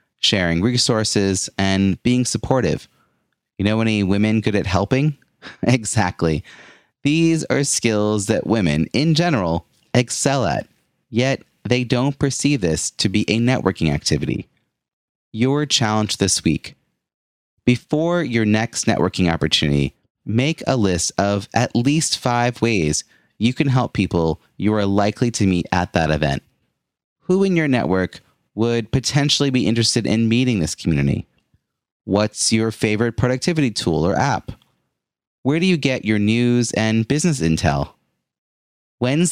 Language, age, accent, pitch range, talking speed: English, 30-49, American, 95-125 Hz, 135 wpm